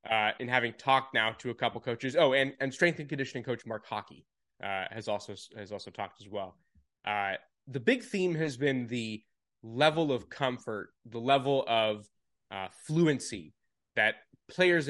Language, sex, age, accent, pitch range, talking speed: English, male, 20-39, American, 115-135 Hz, 175 wpm